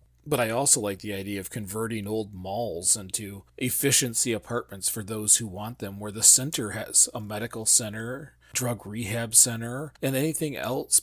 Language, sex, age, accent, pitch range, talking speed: English, male, 40-59, American, 105-130 Hz, 170 wpm